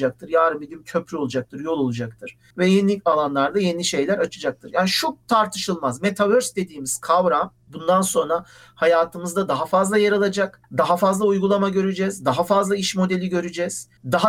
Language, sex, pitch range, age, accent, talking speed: Turkish, male, 150-205 Hz, 50-69, native, 150 wpm